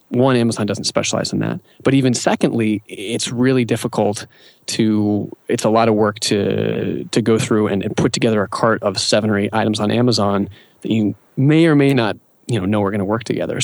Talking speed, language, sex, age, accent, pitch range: 215 wpm, English, male, 30-49, American, 100-125 Hz